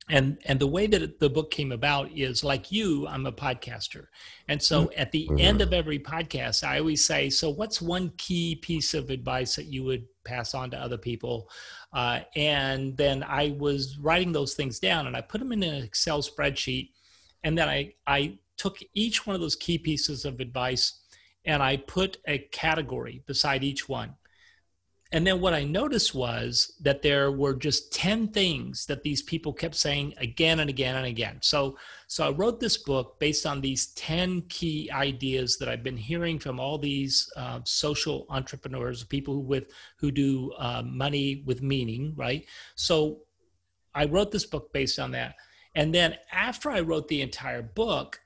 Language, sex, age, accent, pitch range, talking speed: English, male, 40-59, American, 130-160 Hz, 185 wpm